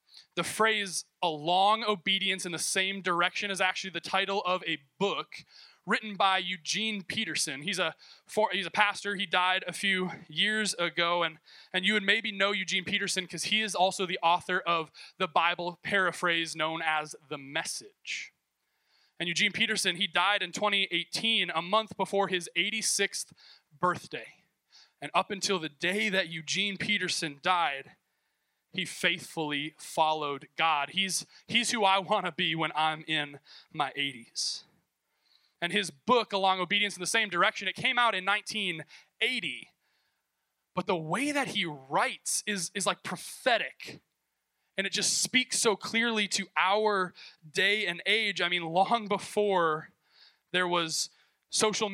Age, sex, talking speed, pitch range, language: 20-39, male, 155 wpm, 165-205 Hz, English